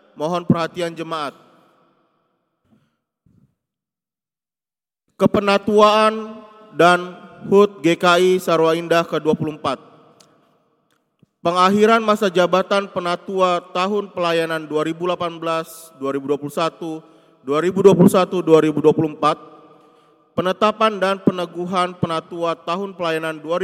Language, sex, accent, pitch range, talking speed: Indonesian, male, native, 155-185 Hz, 60 wpm